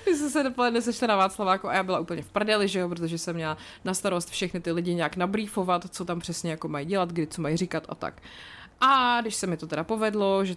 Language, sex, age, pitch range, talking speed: Czech, female, 30-49, 165-215 Hz, 255 wpm